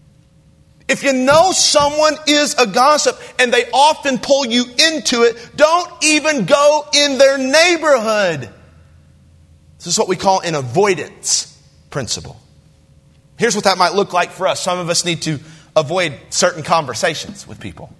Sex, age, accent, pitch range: male, 40-59, American, 165-235 Hz